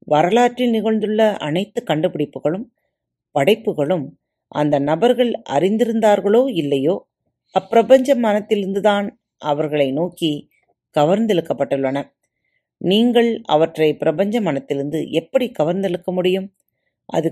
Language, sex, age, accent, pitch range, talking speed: Tamil, female, 30-49, native, 145-220 Hz, 75 wpm